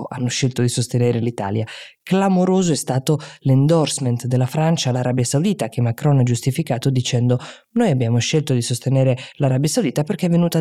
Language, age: Italian, 20-39